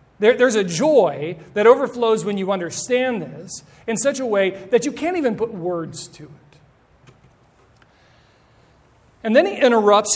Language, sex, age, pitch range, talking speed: English, male, 40-59, 160-220 Hz, 150 wpm